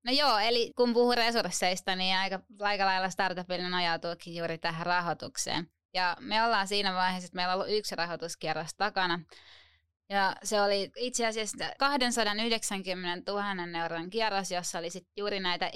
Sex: female